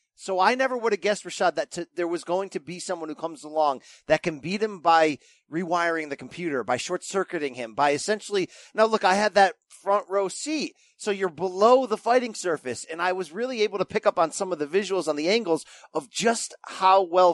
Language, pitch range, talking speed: English, 170-240 Hz, 220 wpm